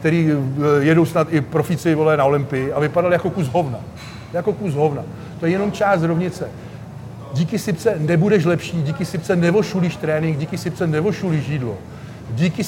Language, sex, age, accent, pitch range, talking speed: Czech, male, 50-69, native, 140-175 Hz, 155 wpm